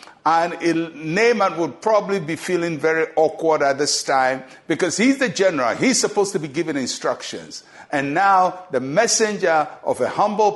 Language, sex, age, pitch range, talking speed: English, male, 60-79, 145-215 Hz, 160 wpm